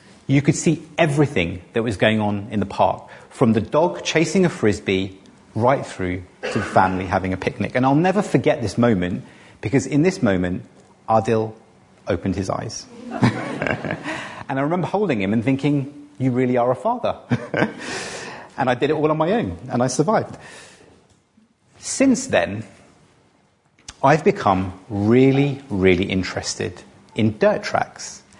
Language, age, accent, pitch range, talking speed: English, 30-49, British, 100-150 Hz, 150 wpm